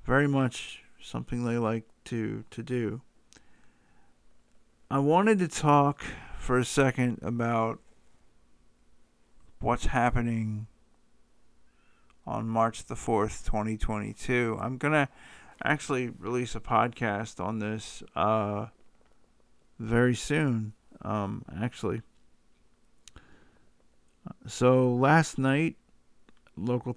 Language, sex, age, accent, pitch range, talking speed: English, male, 50-69, American, 110-130 Hz, 90 wpm